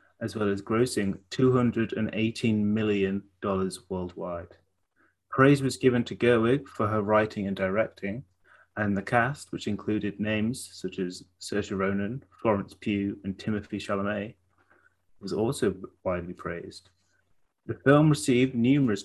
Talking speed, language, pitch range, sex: 125 wpm, English, 100-120 Hz, male